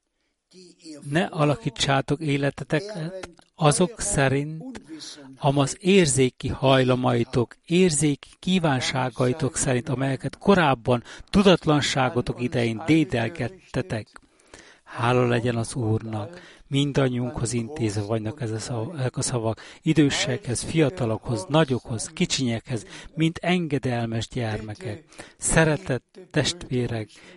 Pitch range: 125-165 Hz